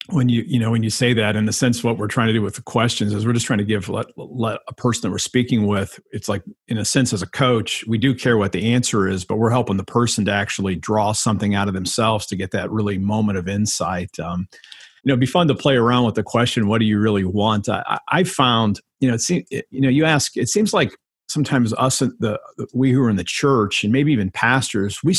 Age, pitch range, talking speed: 50-69, 105-125 Hz, 270 wpm